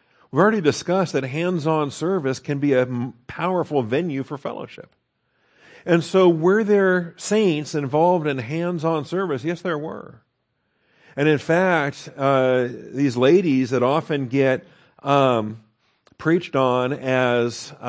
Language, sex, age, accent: English, male, 50-69, American